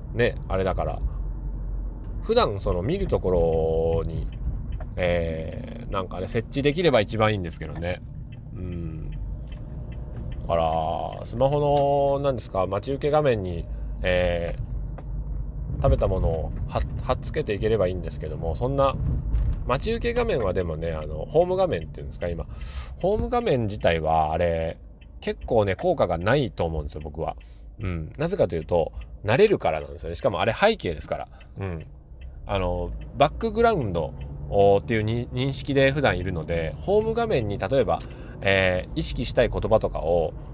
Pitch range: 80-135 Hz